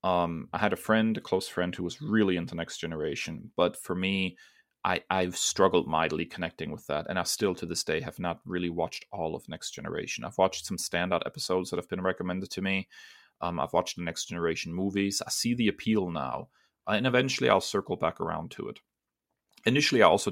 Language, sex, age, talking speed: English, male, 30-49, 215 wpm